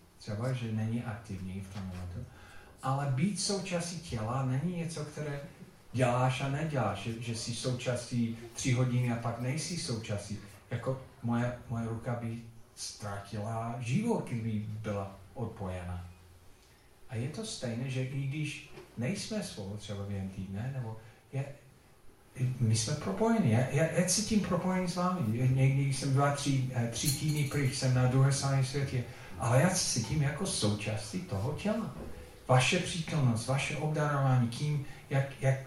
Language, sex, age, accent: Czech, male, 40-59, native